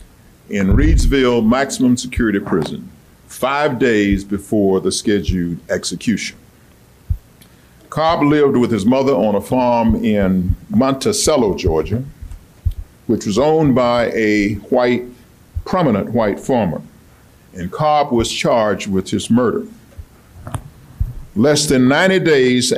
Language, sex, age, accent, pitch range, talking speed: English, male, 50-69, American, 95-140 Hz, 110 wpm